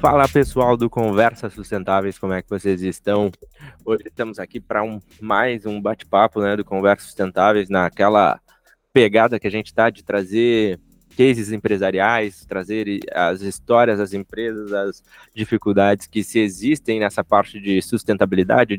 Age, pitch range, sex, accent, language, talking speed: 20-39, 100-115 Hz, male, Brazilian, Portuguese, 140 wpm